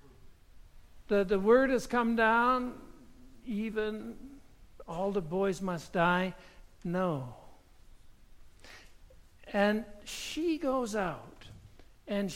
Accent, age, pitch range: American, 60-79, 175-225 Hz